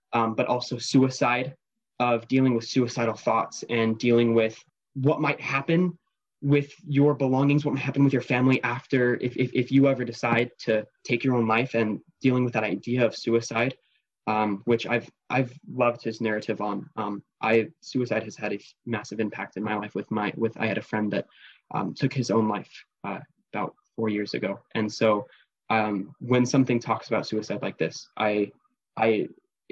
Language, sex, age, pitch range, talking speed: English, male, 20-39, 115-135 Hz, 190 wpm